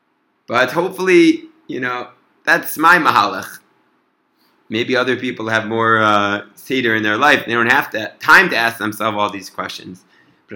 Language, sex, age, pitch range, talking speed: English, male, 30-49, 105-140 Hz, 165 wpm